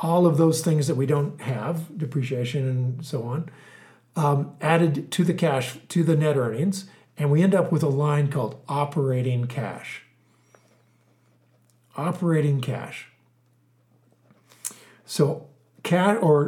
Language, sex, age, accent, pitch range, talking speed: English, male, 50-69, American, 130-160 Hz, 130 wpm